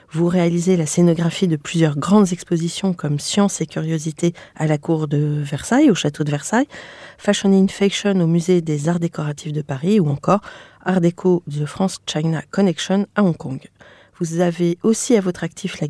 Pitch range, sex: 165-210 Hz, female